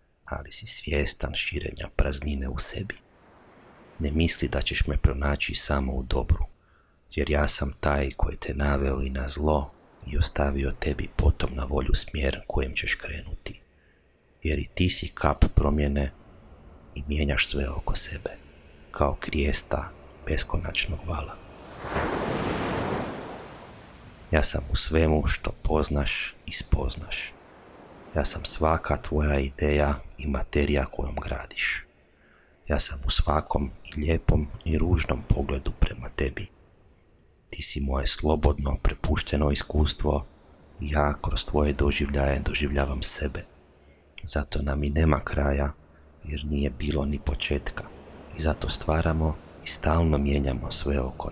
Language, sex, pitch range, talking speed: Croatian, male, 70-80 Hz, 125 wpm